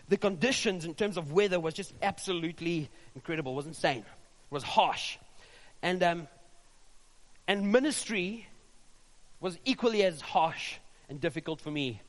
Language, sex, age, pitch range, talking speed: English, male, 30-49, 160-200 Hz, 135 wpm